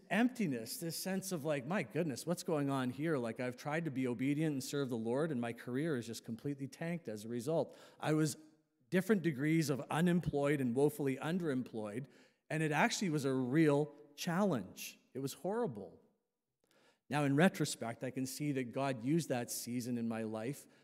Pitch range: 130-165 Hz